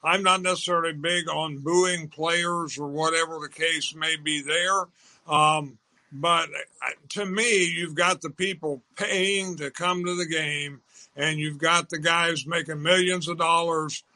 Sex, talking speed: male, 155 wpm